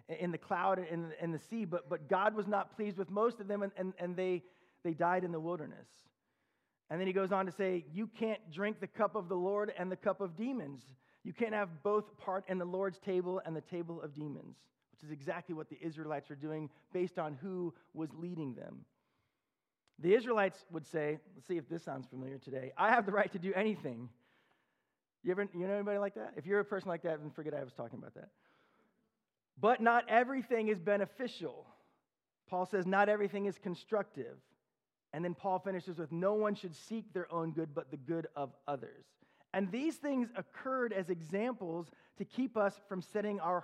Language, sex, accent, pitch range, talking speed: English, male, American, 160-205 Hz, 210 wpm